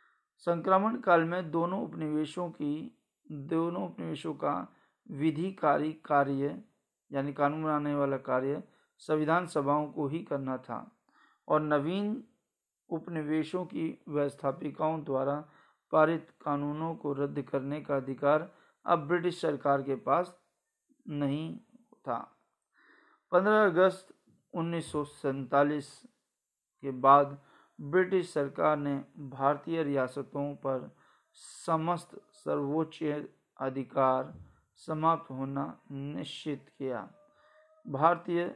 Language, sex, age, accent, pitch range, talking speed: Hindi, male, 50-69, native, 140-175 Hz, 95 wpm